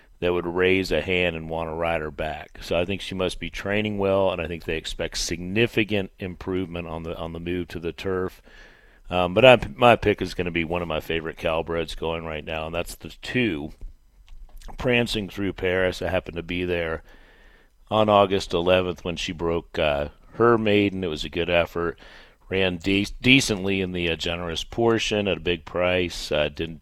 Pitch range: 80-95 Hz